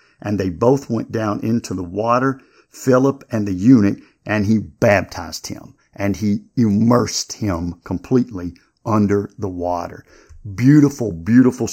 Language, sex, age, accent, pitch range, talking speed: English, male, 50-69, American, 105-135 Hz, 135 wpm